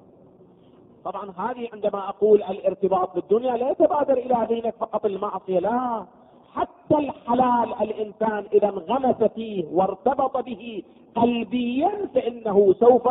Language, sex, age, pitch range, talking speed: Arabic, male, 40-59, 195-265 Hz, 110 wpm